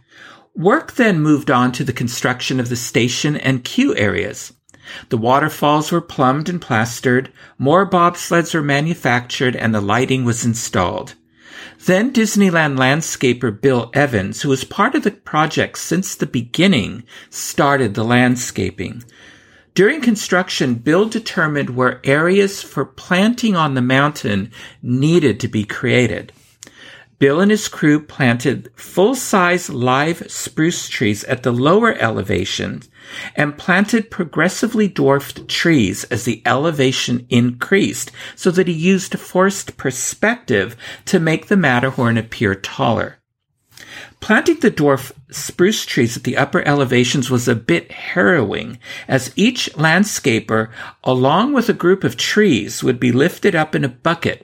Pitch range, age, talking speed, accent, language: 125-175 Hz, 50-69, 135 wpm, American, English